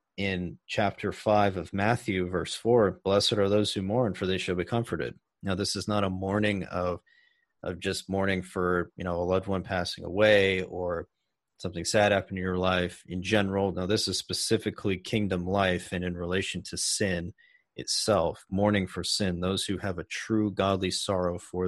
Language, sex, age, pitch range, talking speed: English, male, 30-49, 90-105 Hz, 185 wpm